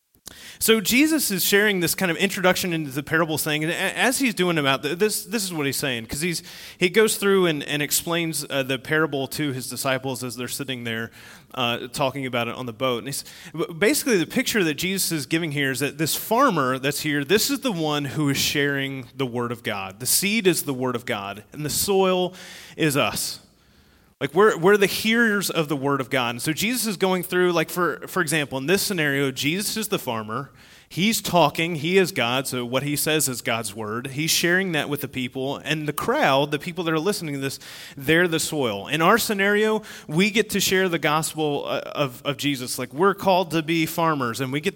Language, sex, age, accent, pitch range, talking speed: English, male, 30-49, American, 135-180 Hz, 225 wpm